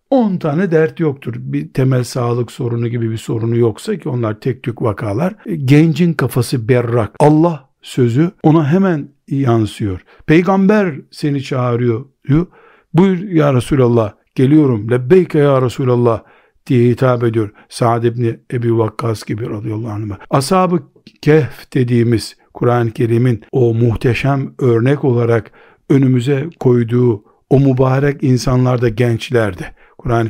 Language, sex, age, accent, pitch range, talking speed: Turkish, male, 60-79, native, 120-145 Hz, 125 wpm